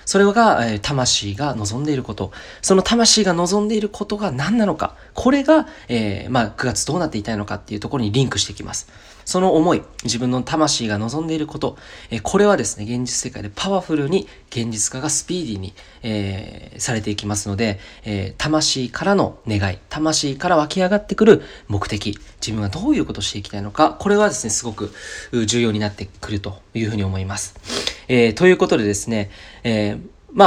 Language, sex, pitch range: Japanese, male, 105-170 Hz